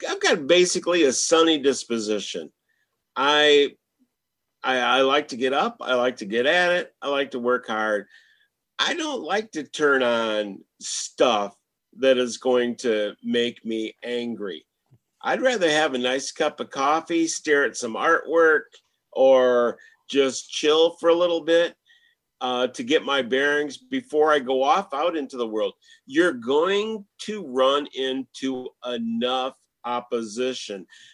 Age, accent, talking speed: 50-69, American, 150 wpm